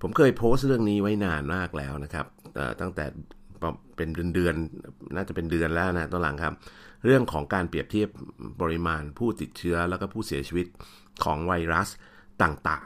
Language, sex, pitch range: Thai, male, 80-95 Hz